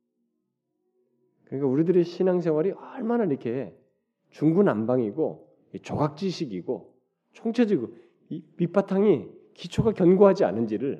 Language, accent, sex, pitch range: Korean, native, male, 105-175 Hz